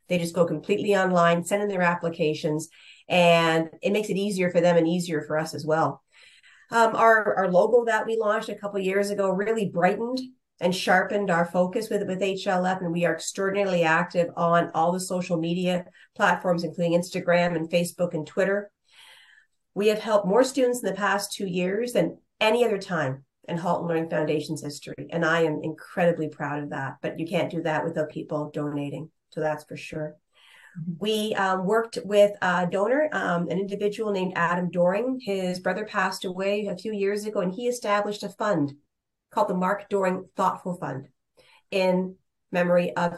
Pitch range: 165-200 Hz